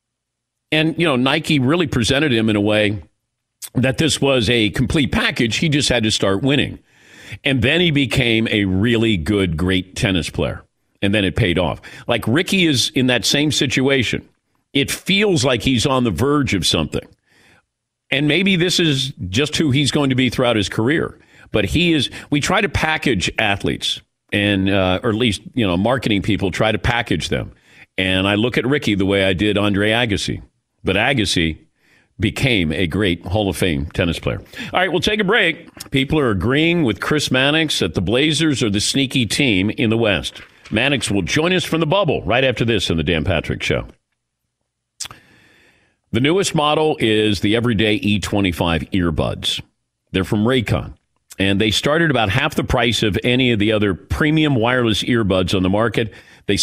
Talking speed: 185 wpm